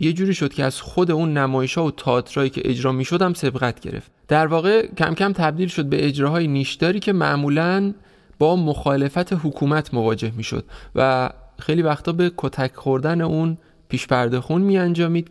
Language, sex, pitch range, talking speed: Persian, male, 130-170 Hz, 175 wpm